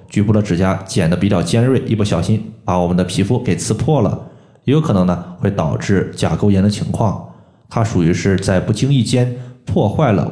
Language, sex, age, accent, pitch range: Chinese, male, 20-39, native, 95-120 Hz